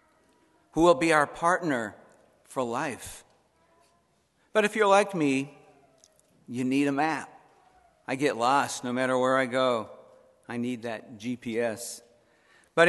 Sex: male